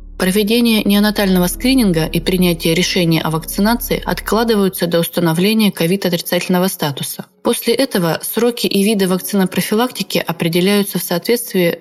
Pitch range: 170-205 Hz